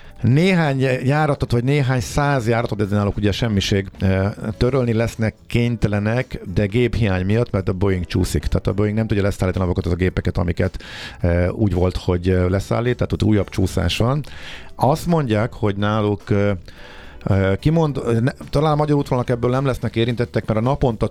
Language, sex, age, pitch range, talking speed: Hungarian, male, 50-69, 95-115 Hz, 160 wpm